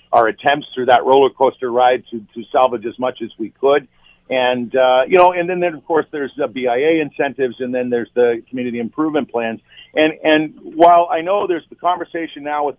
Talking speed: 210 wpm